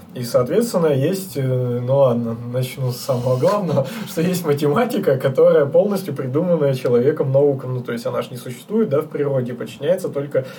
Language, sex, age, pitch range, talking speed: Russian, male, 20-39, 125-170 Hz, 165 wpm